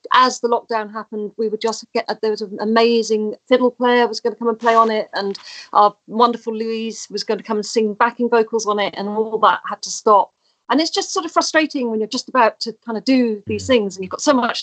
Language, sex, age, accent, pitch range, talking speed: English, female, 40-59, British, 205-250 Hz, 260 wpm